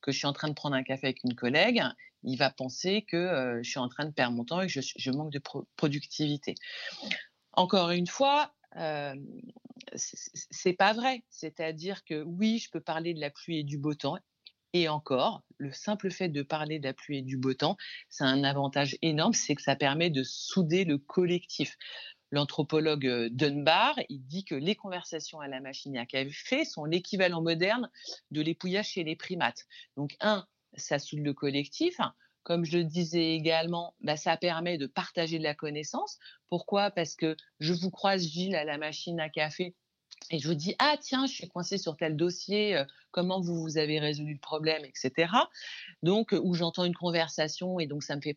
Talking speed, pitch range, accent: 200 wpm, 145-190 Hz, French